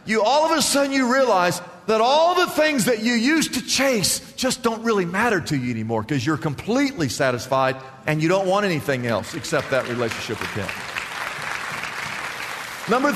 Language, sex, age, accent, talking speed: English, male, 50-69, American, 180 wpm